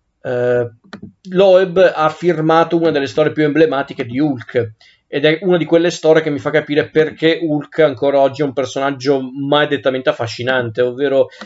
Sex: male